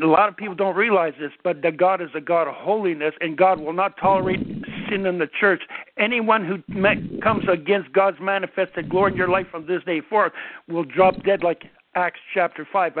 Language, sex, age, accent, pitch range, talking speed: English, male, 60-79, American, 160-195 Hz, 210 wpm